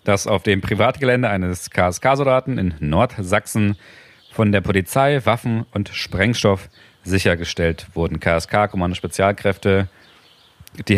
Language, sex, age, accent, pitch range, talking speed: German, male, 40-59, German, 95-110 Hz, 110 wpm